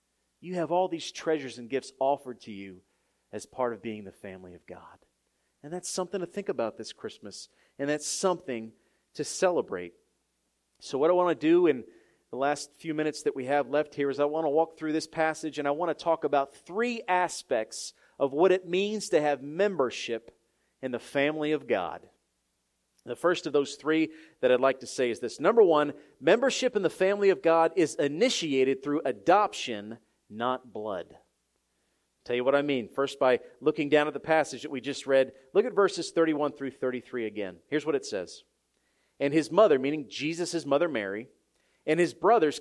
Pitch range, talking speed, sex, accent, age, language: 135-180 Hz, 195 wpm, male, American, 40-59, English